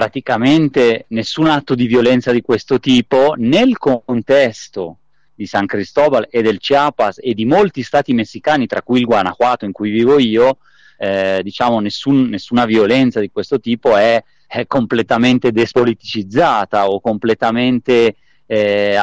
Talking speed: 140 wpm